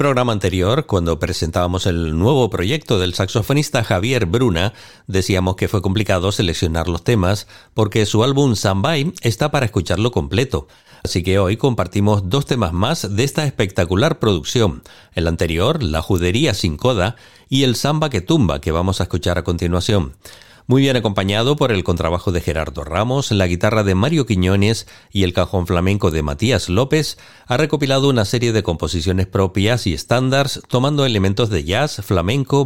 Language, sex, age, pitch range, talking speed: Spanish, male, 40-59, 90-120 Hz, 165 wpm